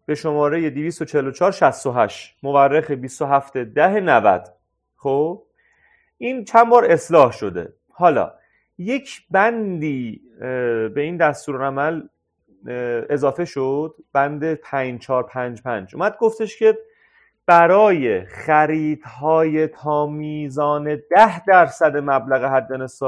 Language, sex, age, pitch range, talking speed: Persian, male, 30-49, 140-175 Hz, 85 wpm